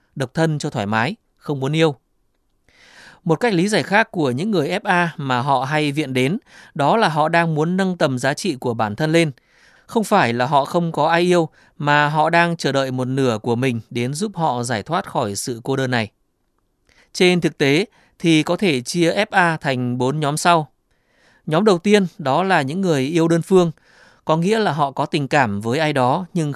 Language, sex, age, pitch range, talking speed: Vietnamese, male, 20-39, 130-175 Hz, 215 wpm